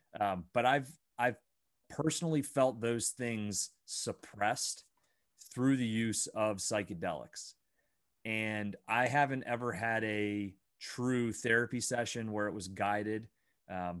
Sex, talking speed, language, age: male, 120 wpm, English, 30-49